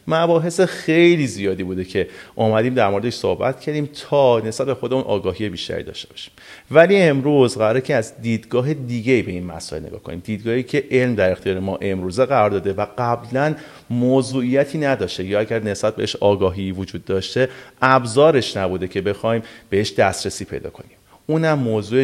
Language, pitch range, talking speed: Persian, 100-135 Hz, 165 wpm